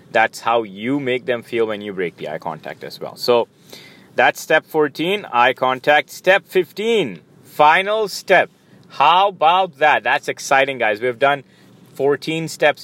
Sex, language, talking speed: male, English, 160 wpm